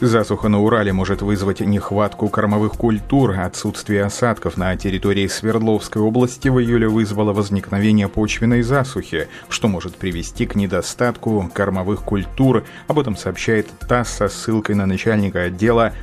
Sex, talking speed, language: male, 135 wpm, Russian